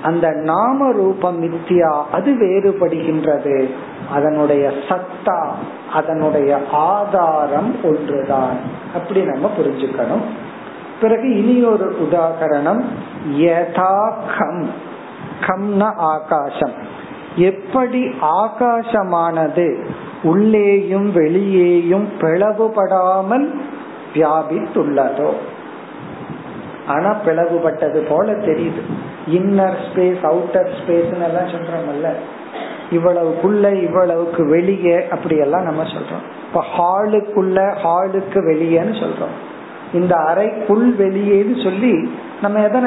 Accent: native